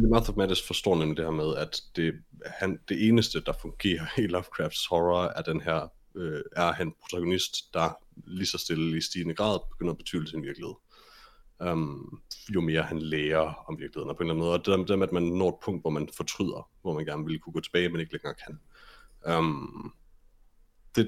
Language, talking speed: Danish, 220 wpm